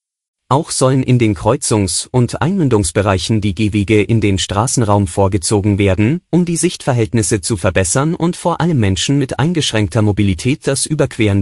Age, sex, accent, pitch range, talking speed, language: 30-49, male, German, 100-130 Hz, 145 wpm, German